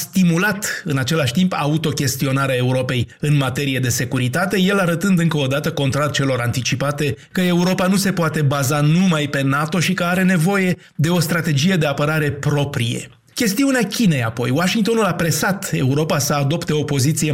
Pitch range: 135-170 Hz